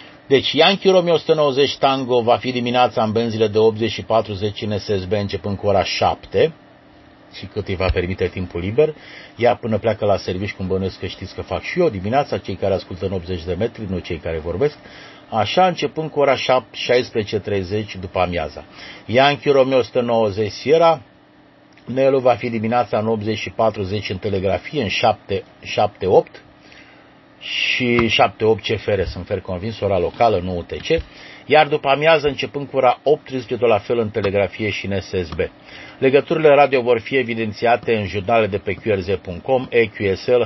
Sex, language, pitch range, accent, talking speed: male, Romanian, 100-135 Hz, native, 165 wpm